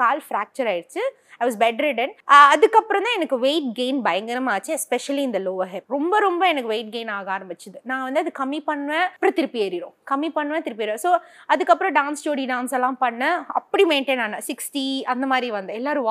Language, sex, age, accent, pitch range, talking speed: Tamil, female, 20-39, native, 255-350 Hz, 95 wpm